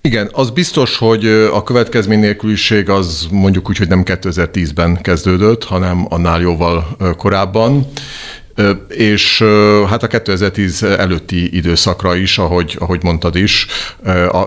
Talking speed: 125 wpm